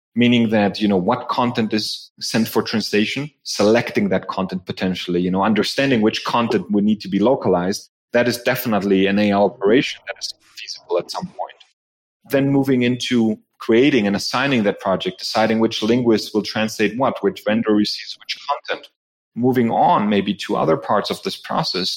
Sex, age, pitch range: male, 30-49, 100-120 Hz